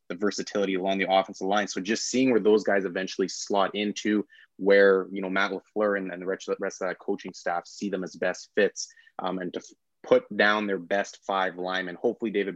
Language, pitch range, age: English, 95-110 Hz, 20-39